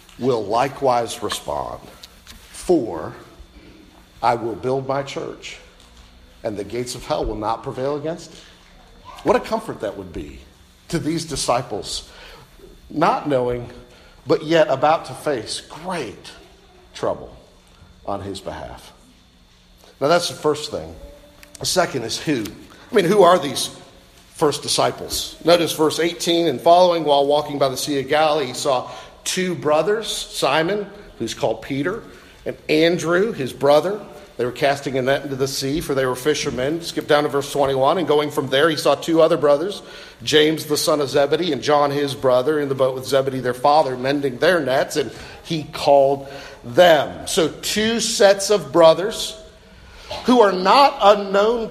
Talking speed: 160 wpm